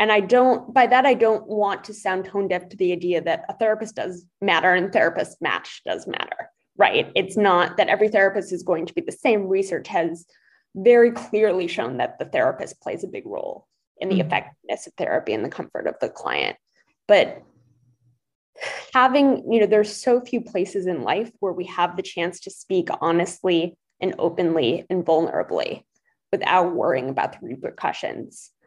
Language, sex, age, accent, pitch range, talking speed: English, female, 20-39, American, 180-220 Hz, 180 wpm